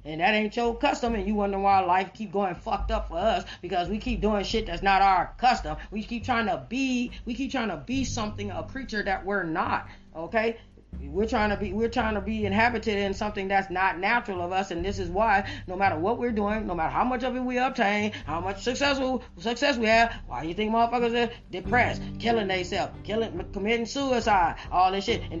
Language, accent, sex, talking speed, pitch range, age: English, American, female, 225 wpm, 170-235 Hz, 30-49